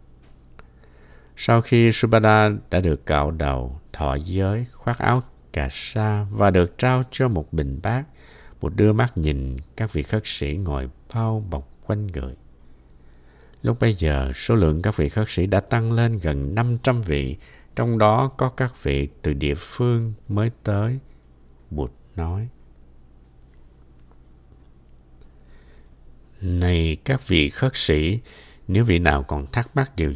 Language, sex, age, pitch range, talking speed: Vietnamese, male, 60-79, 65-110 Hz, 145 wpm